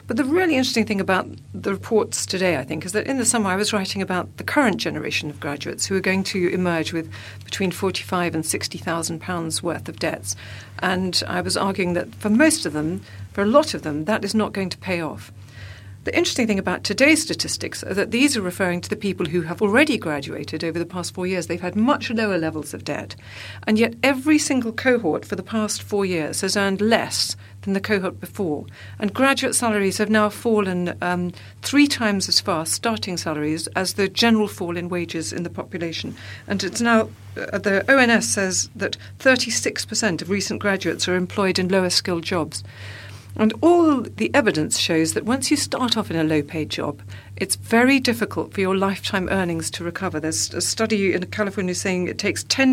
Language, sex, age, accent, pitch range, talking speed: English, female, 50-69, British, 155-215 Hz, 205 wpm